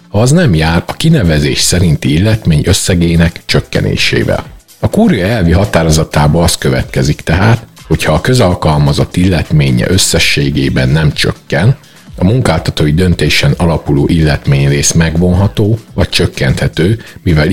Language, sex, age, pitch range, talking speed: Hungarian, male, 50-69, 75-105 Hz, 115 wpm